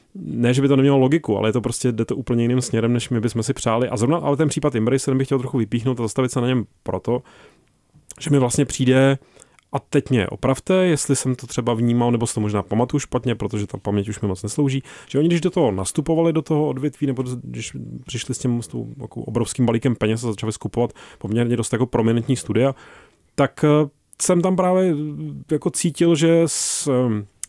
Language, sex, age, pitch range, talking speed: Czech, male, 30-49, 115-140 Hz, 220 wpm